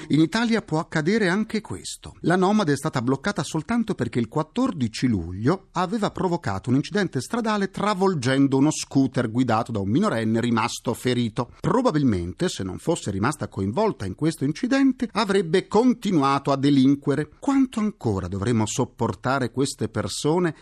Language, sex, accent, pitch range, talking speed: Italian, male, native, 130-200 Hz, 145 wpm